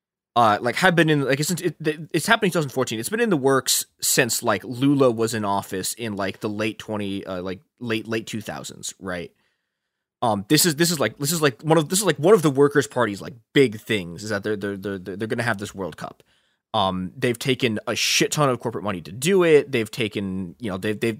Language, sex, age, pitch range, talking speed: English, male, 20-39, 105-145 Hz, 240 wpm